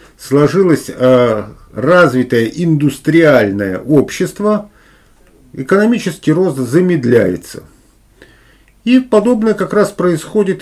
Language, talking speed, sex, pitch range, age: Russian, 75 wpm, male, 130-195 Hz, 50-69